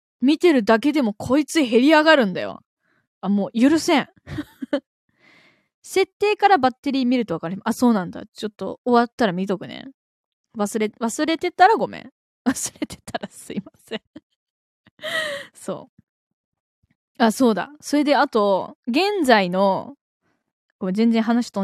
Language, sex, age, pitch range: Japanese, female, 20-39, 195-285 Hz